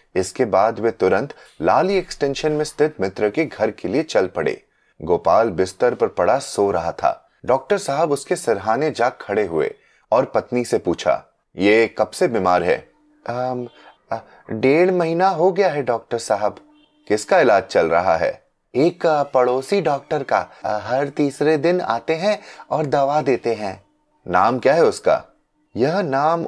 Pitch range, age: 125-185 Hz, 30-49